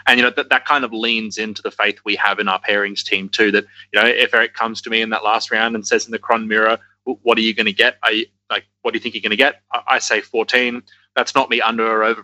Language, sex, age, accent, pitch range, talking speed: English, male, 20-39, Australian, 105-115 Hz, 305 wpm